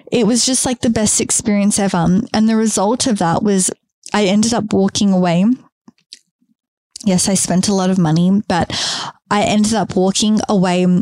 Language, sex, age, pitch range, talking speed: English, female, 20-39, 180-210 Hz, 175 wpm